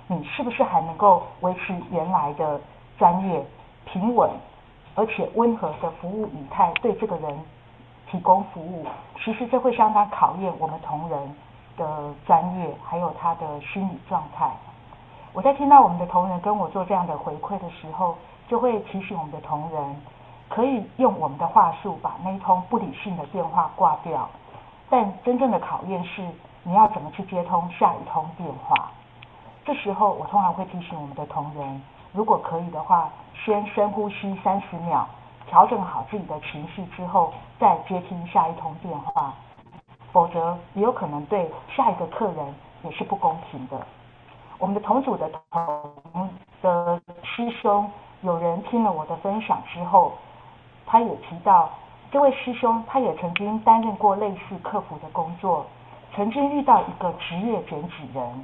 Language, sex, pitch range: Chinese, female, 155-210 Hz